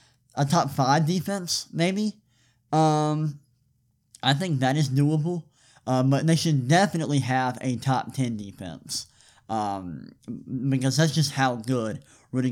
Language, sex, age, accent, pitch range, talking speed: English, male, 20-39, American, 125-145 Hz, 125 wpm